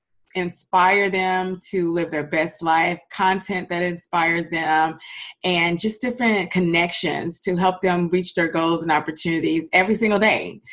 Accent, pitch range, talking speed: American, 170-195 Hz, 145 wpm